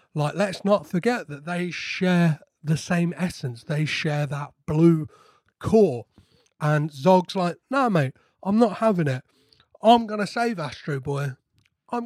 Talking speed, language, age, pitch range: 155 wpm, English, 30-49, 155-225 Hz